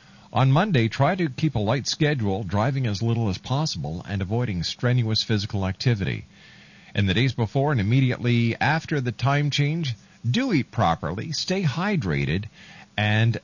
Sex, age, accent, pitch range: male, 50-69, American, 105-155 Hz